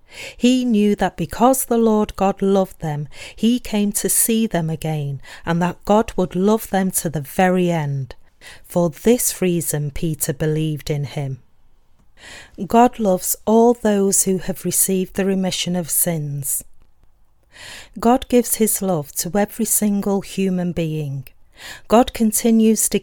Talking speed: 145 wpm